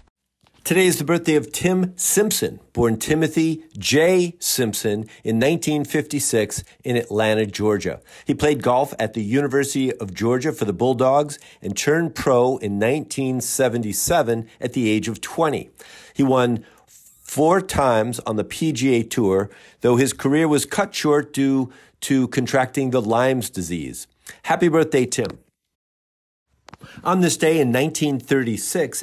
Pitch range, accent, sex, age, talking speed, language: 110-150 Hz, American, male, 50-69, 135 wpm, English